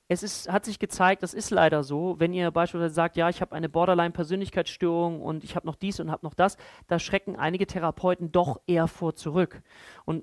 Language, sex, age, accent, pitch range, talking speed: German, male, 40-59, German, 155-190 Hz, 210 wpm